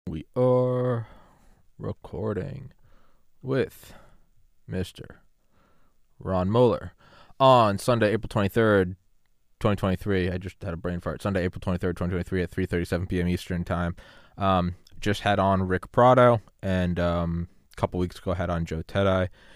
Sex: male